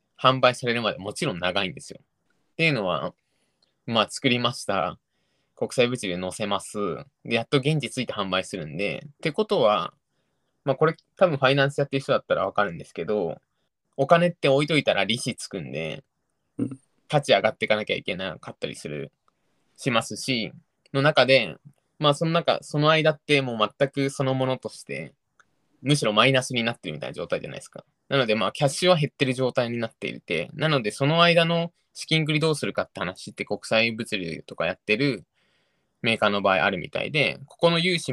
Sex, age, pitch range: male, 20-39, 115-155 Hz